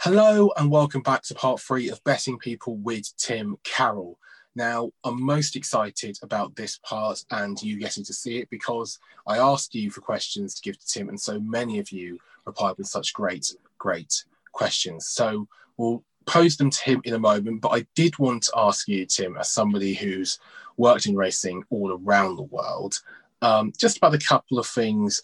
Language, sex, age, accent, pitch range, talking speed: English, male, 20-39, British, 100-140 Hz, 195 wpm